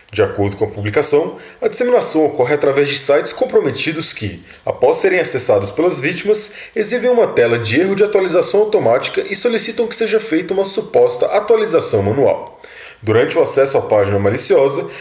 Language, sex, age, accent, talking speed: Portuguese, male, 20-39, Brazilian, 165 wpm